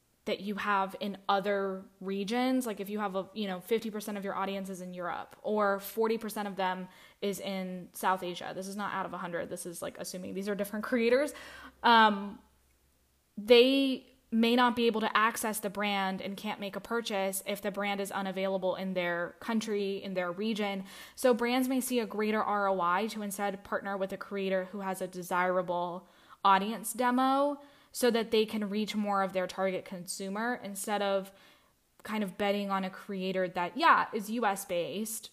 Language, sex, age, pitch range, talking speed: English, female, 10-29, 190-220 Hz, 185 wpm